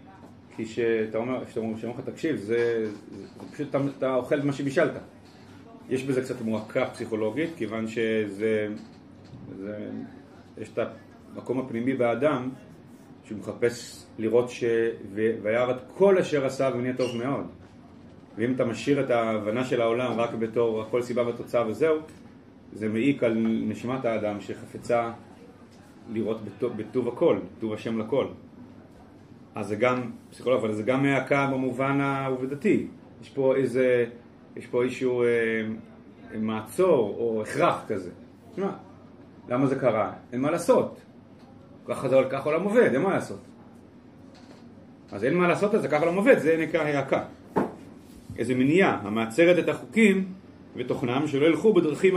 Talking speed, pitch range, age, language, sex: 145 wpm, 115-140 Hz, 30-49, Hebrew, male